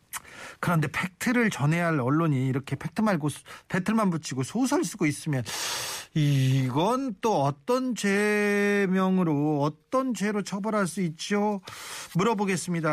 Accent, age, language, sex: native, 40-59, Korean, male